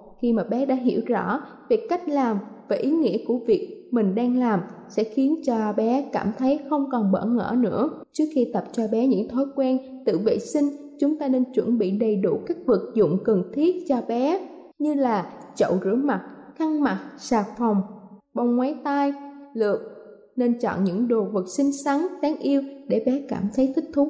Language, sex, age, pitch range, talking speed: Vietnamese, female, 20-39, 225-290 Hz, 200 wpm